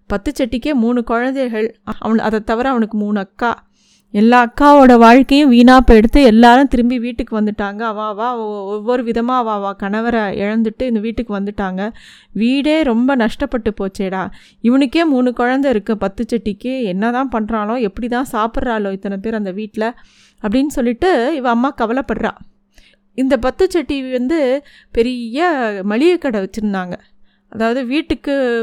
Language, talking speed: Tamil, 130 wpm